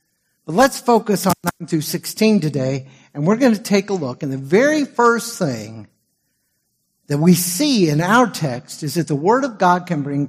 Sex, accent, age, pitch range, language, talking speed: male, American, 60-79, 145-200 Hz, English, 200 wpm